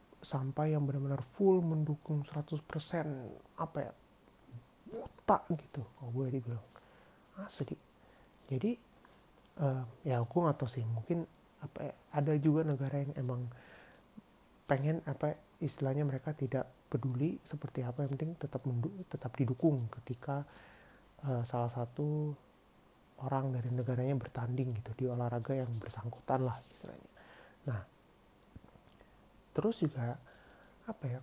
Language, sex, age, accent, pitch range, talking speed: Indonesian, male, 30-49, native, 125-150 Hz, 120 wpm